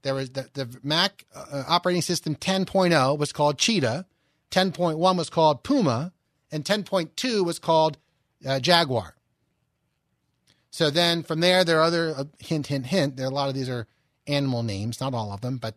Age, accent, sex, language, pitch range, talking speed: 30-49, American, male, English, 130-180 Hz, 180 wpm